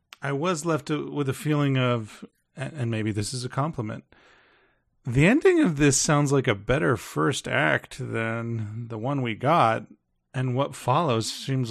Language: English